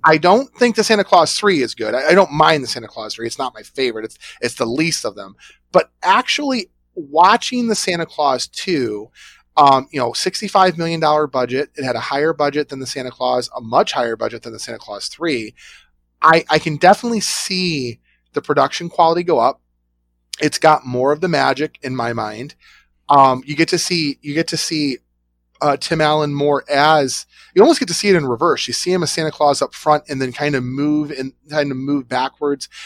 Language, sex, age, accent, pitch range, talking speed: English, male, 30-49, American, 125-170 Hz, 215 wpm